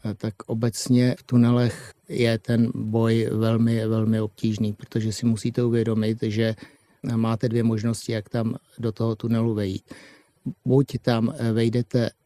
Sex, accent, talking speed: male, native, 130 wpm